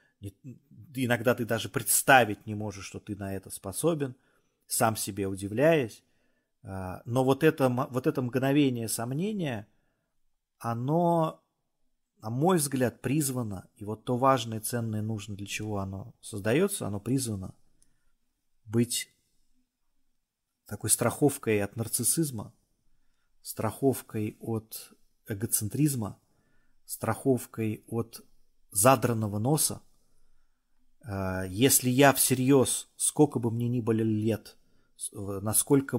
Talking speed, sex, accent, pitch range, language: 100 wpm, male, native, 105-135 Hz, Russian